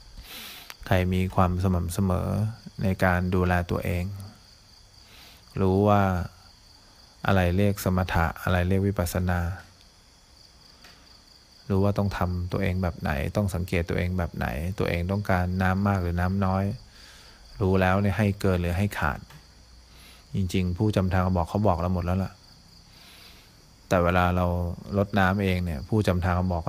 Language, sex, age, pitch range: English, male, 20-39, 90-100 Hz